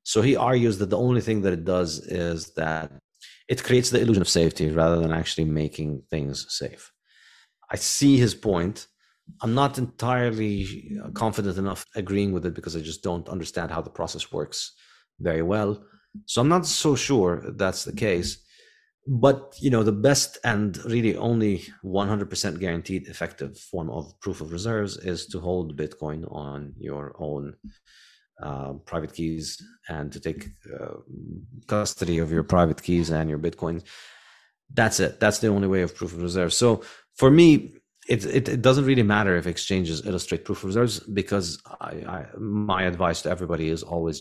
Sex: male